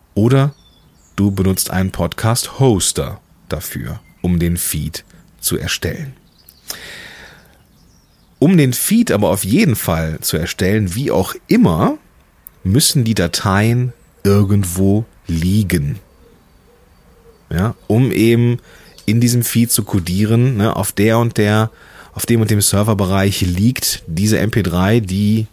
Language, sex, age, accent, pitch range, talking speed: German, male, 30-49, German, 90-115 Hz, 120 wpm